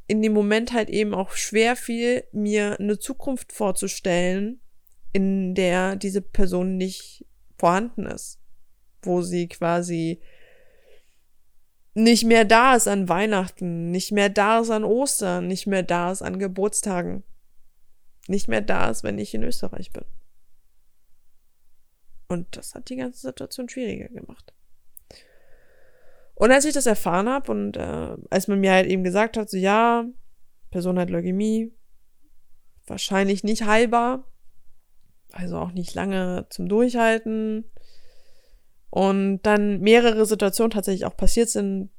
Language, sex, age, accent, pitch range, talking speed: German, female, 20-39, German, 175-225 Hz, 135 wpm